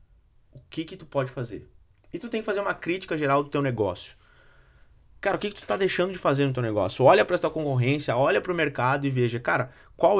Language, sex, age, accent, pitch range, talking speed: Portuguese, male, 20-39, Brazilian, 120-160 Hz, 235 wpm